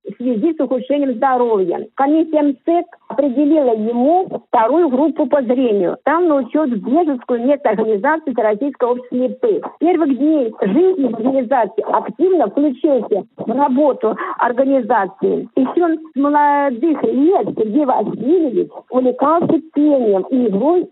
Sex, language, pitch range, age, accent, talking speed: female, Russian, 245-310 Hz, 50-69, native, 115 wpm